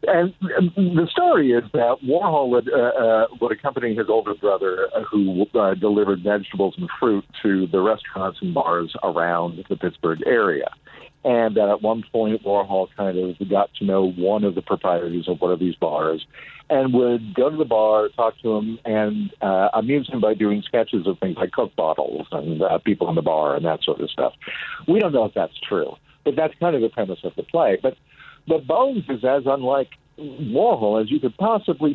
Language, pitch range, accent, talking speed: English, 100-140 Hz, American, 195 wpm